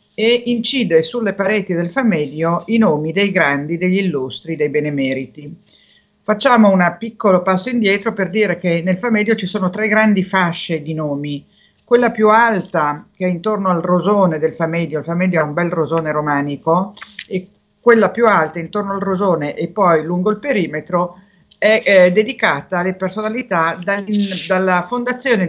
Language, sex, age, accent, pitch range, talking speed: Italian, female, 50-69, native, 165-210 Hz, 160 wpm